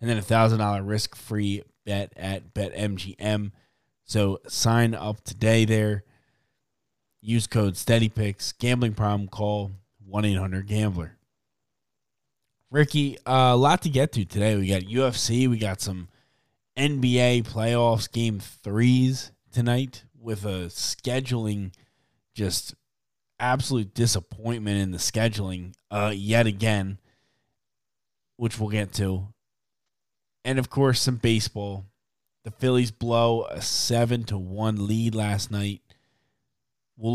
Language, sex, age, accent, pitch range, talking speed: English, male, 20-39, American, 100-120 Hz, 115 wpm